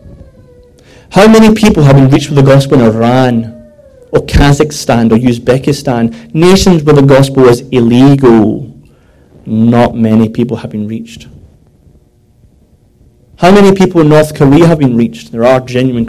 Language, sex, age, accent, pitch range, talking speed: English, male, 30-49, British, 115-145 Hz, 145 wpm